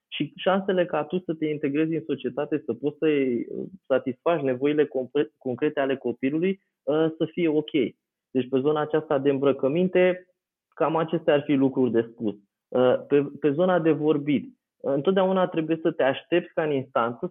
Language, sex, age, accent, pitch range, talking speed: Romanian, male, 20-39, native, 145-185 Hz, 155 wpm